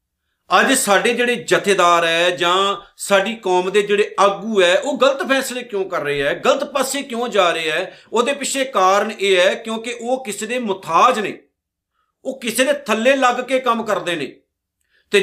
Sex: male